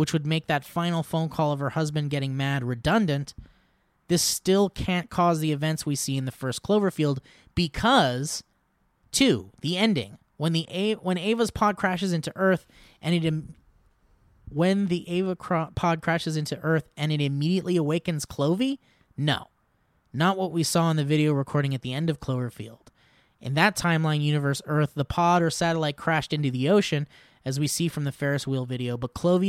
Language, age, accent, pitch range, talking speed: English, 20-39, American, 145-185 Hz, 185 wpm